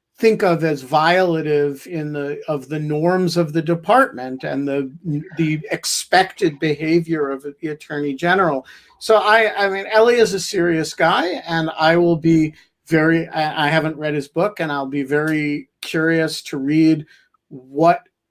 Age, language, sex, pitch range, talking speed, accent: 50-69, English, male, 140-170 Hz, 155 wpm, American